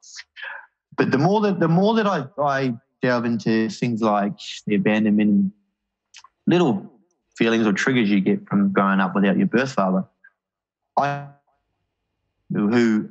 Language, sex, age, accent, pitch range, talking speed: English, male, 20-39, Australian, 100-115 Hz, 135 wpm